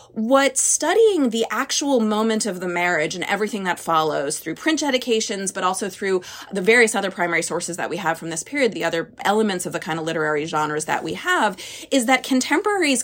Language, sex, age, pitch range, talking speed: English, female, 30-49, 180-245 Hz, 200 wpm